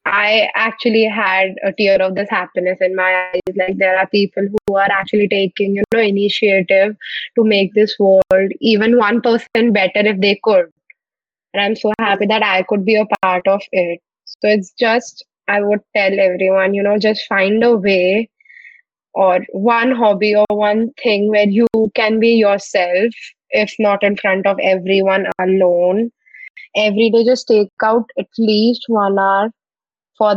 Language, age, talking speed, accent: English, 20-39, 170 wpm, Indian